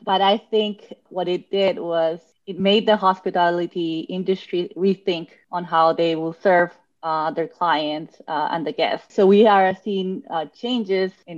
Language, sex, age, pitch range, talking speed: English, female, 20-39, 170-200 Hz, 170 wpm